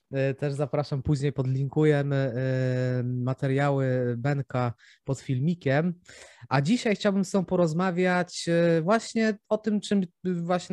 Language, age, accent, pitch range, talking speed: Polish, 20-39, native, 135-170 Hz, 105 wpm